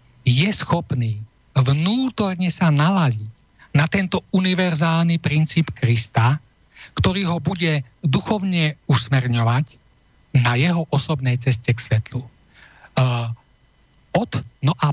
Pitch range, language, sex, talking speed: 130-180 Hz, Slovak, male, 95 wpm